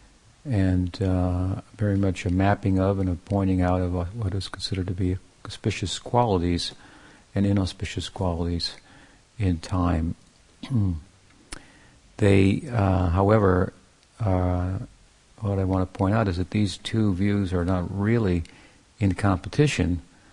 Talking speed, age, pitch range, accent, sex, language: 130 wpm, 50-69, 90-100 Hz, American, male, English